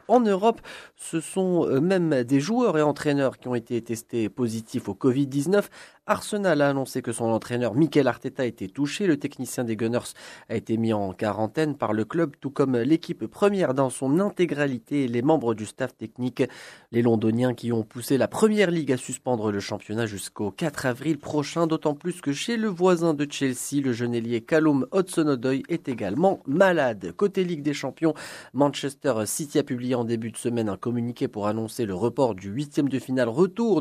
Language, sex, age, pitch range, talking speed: Arabic, male, 40-59, 115-150 Hz, 190 wpm